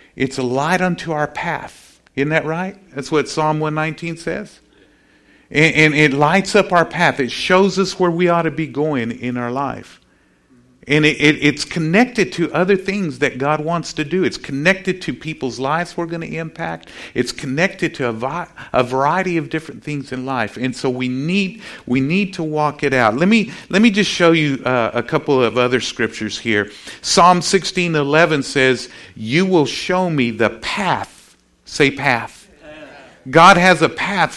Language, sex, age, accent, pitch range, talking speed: English, male, 50-69, American, 130-175 Hz, 185 wpm